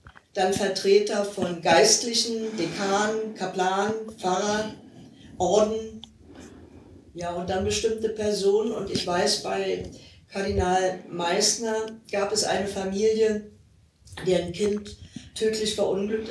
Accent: German